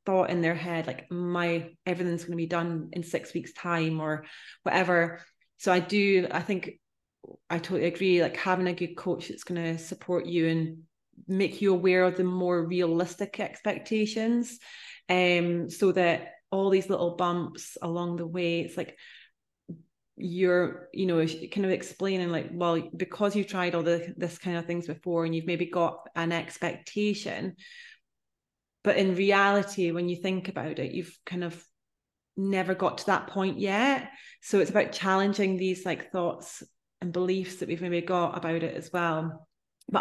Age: 30-49